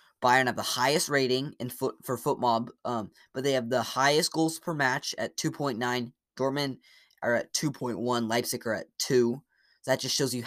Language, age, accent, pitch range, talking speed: English, 10-29, American, 115-135 Hz, 185 wpm